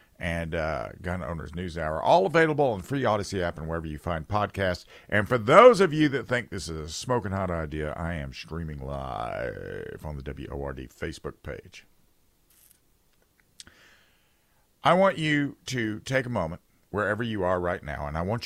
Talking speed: 175 wpm